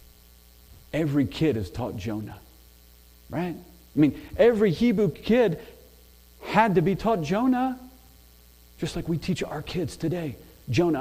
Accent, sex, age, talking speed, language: American, male, 40-59, 130 wpm, English